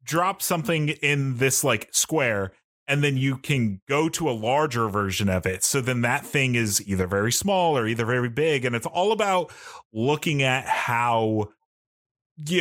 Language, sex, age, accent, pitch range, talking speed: English, male, 30-49, American, 105-150 Hz, 175 wpm